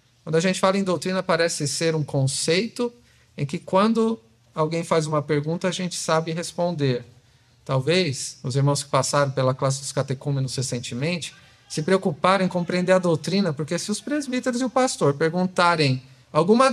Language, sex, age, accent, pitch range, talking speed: Portuguese, male, 50-69, Brazilian, 140-195 Hz, 165 wpm